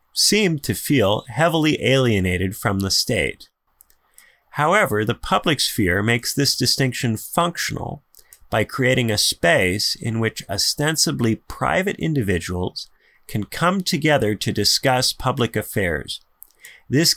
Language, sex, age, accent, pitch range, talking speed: English, male, 30-49, American, 105-140 Hz, 115 wpm